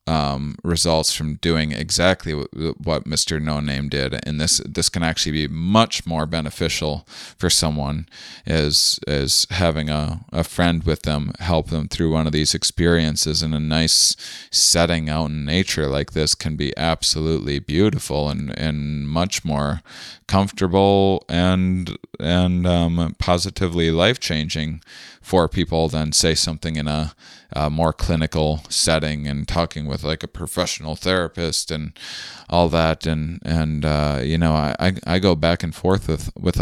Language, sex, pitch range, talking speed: English, male, 75-85 Hz, 150 wpm